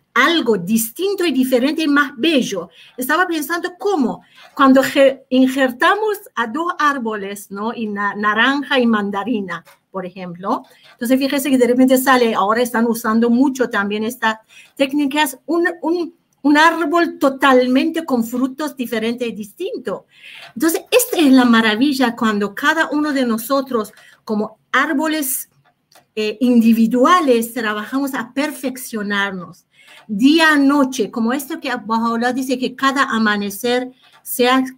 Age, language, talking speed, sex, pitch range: 50-69, Spanish, 130 wpm, female, 230-290 Hz